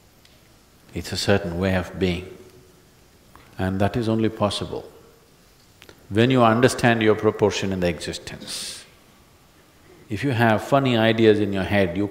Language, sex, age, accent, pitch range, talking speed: Portuguese, male, 50-69, Indian, 95-120 Hz, 140 wpm